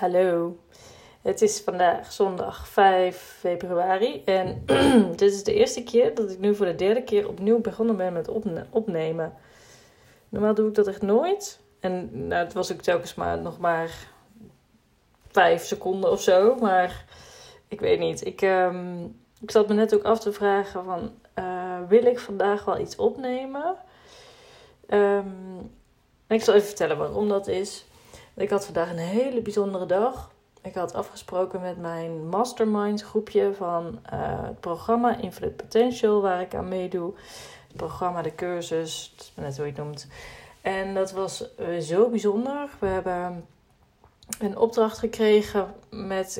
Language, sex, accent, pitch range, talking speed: Dutch, female, Dutch, 180-225 Hz, 160 wpm